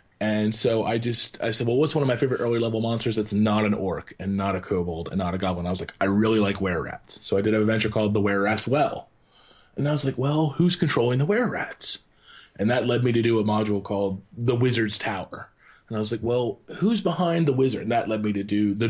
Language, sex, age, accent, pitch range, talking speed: English, male, 20-39, American, 105-120 Hz, 255 wpm